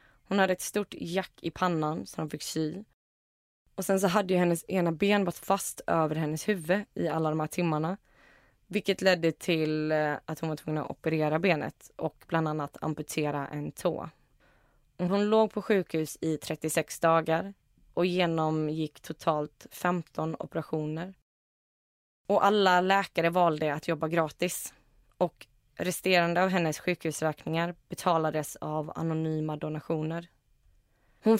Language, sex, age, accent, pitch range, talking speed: Swedish, female, 20-39, native, 155-180 Hz, 140 wpm